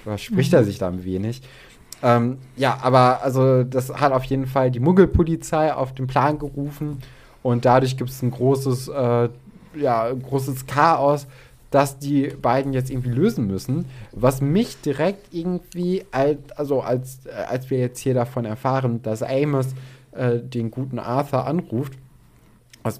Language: German